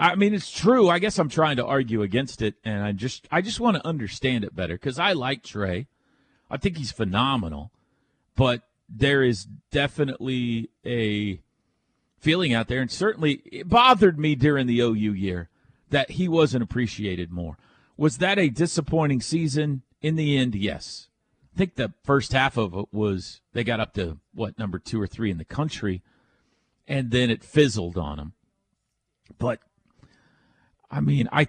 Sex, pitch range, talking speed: male, 110-170 Hz, 175 wpm